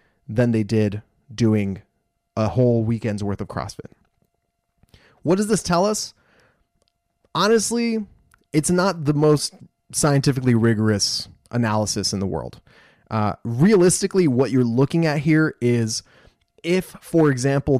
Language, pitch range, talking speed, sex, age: English, 105-140 Hz, 125 wpm, male, 20-39